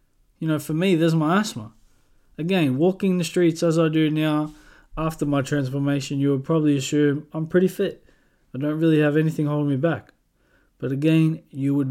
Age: 20-39